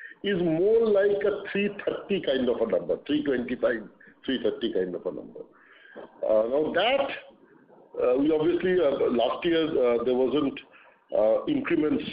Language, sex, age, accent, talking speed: English, male, 50-69, Indian, 145 wpm